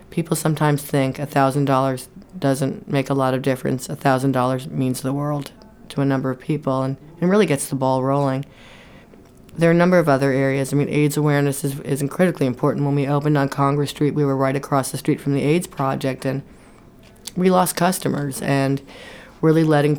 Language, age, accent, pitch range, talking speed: English, 30-49, American, 135-150 Hz, 190 wpm